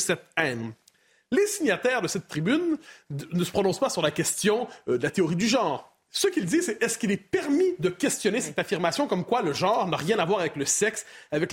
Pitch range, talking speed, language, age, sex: 180-270 Hz, 235 wpm, French, 30-49, male